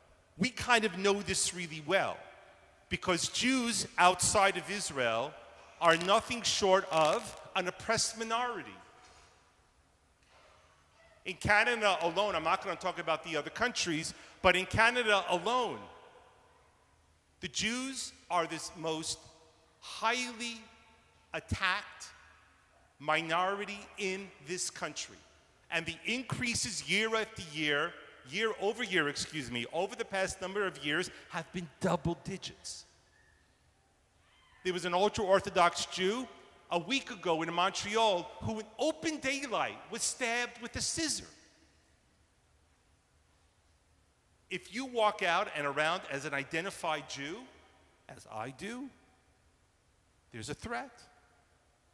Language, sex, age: English, male, 40-59